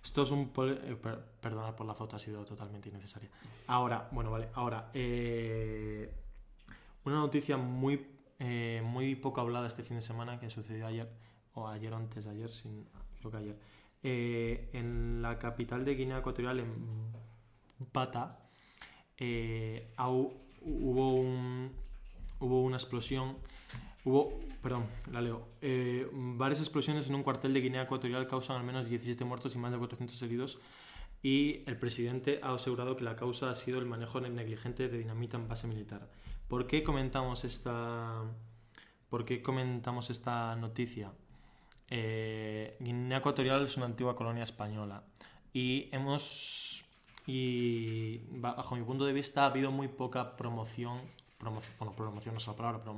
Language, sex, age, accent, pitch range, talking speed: Spanish, male, 20-39, Spanish, 115-130 Hz, 155 wpm